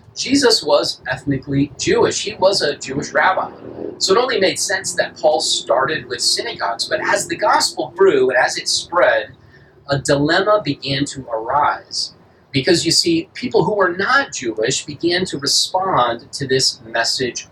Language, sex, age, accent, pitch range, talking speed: English, male, 40-59, American, 125-185 Hz, 160 wpm